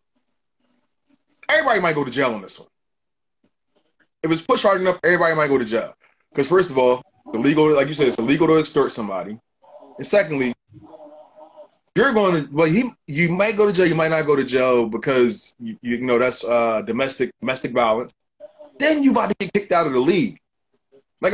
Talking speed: 185 wpm